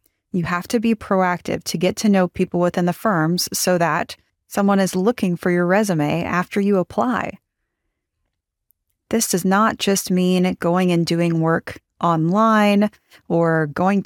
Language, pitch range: English, 170-205 Hz